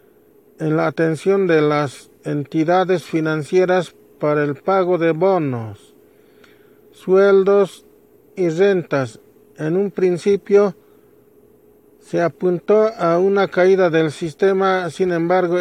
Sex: male